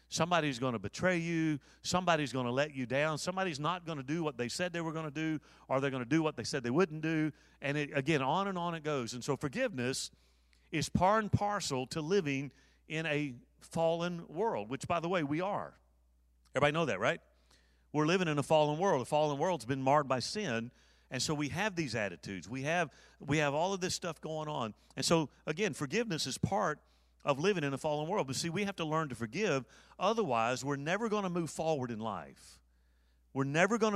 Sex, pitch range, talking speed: male, 130-175 Hz, 220 wpm